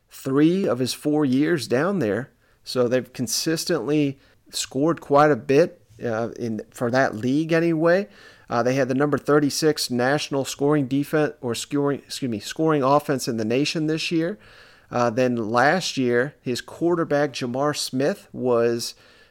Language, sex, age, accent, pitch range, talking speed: English, male, 40-59, American, 125-150 Hz, 150 wpm